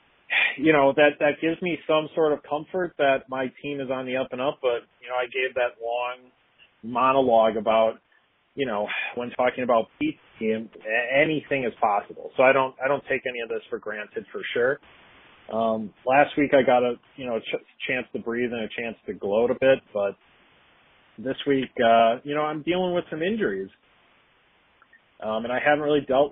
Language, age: English, 30-49